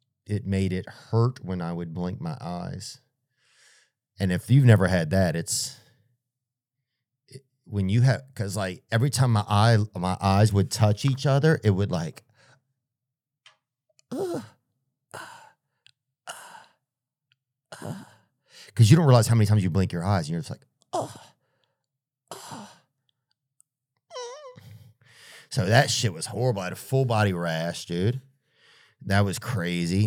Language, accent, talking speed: English, American, 130 wpm